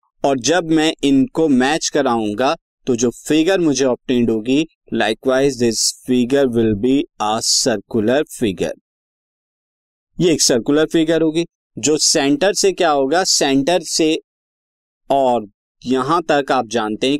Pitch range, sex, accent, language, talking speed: 125-175 Hz, male, native, Hindi, 135 wpm